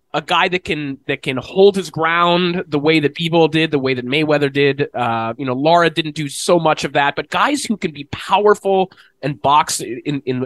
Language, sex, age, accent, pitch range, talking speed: English, male, 20-39, American, 140-185 Hz, 225 wpm